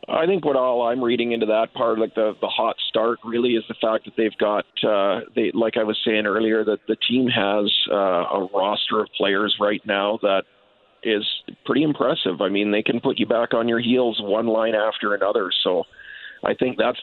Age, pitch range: 40-59, 100-115 Hz